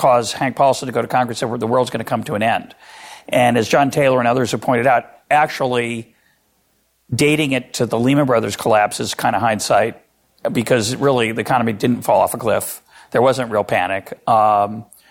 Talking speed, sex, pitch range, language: 205 wpm, male, 120-140 Hz, English